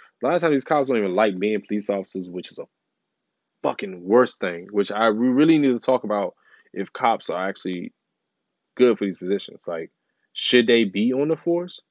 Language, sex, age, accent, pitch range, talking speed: English, male, 20-39, American, 110-145 Hz, 200 wpm